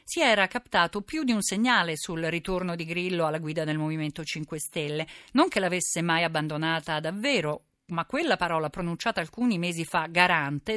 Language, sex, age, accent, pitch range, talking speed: Italian, female, 50-69, native, 155-215 Hz, 175 wpm